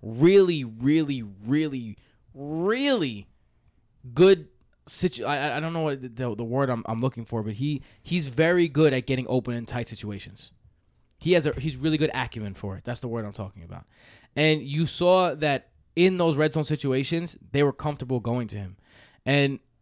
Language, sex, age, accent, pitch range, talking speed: English, male, 20-39, American, 120-150 Hz, 180 wpm